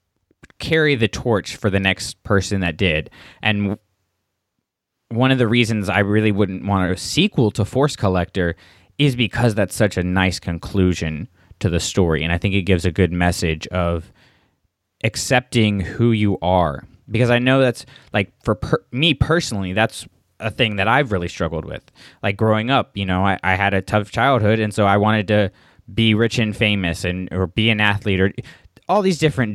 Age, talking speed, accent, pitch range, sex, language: 20-39, 185 wpm, American, 95-115 Hz, male, English